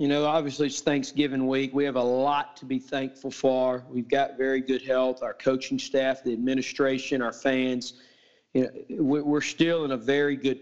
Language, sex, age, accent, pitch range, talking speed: English, male, 40-59, American, 135-155 Hz, 190 wpm